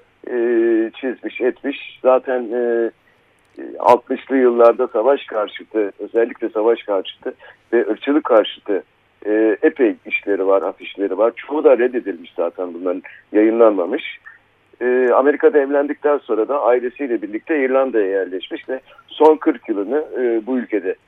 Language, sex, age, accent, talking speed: Turkish, male, 60-79, native, 125 wpm